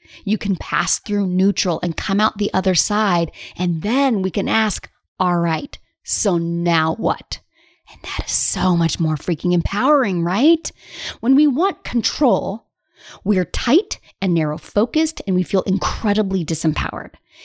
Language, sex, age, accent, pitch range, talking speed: English, female, 30-49, American, 180-265 Hz, 150 wpm